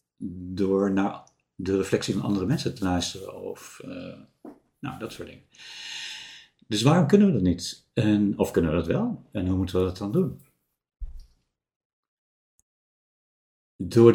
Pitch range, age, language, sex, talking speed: 90-110 Hz, 60-79, Dutch, male, 140 wpm